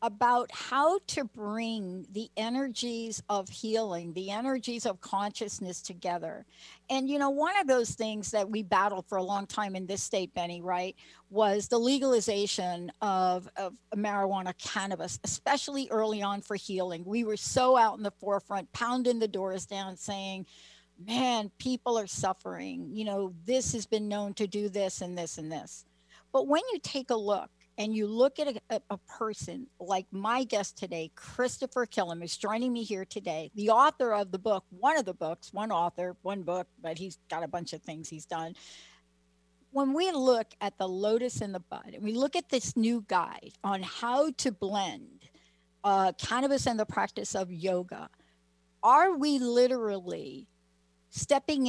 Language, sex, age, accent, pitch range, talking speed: English, female, 60-79, American, 185-245 Hz, 175 wpm